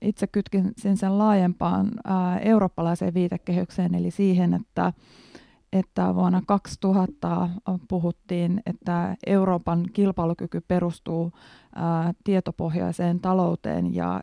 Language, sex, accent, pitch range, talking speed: Finnish, female, native, 175-205 Hz, 85 wpm